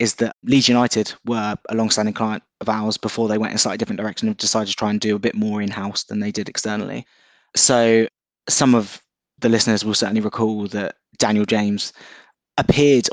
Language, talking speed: English, 200 wpm